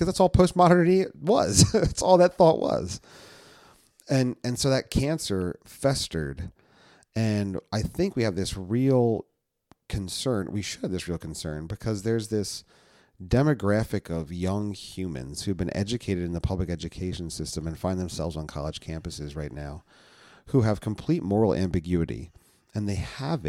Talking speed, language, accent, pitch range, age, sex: 155 wpm, English, American, 90-115 Hz, 40-59, male